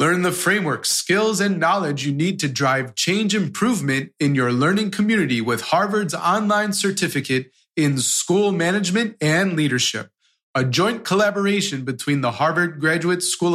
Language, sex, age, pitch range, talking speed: English, male, 30-49, 130-180 Hz, 145 wpm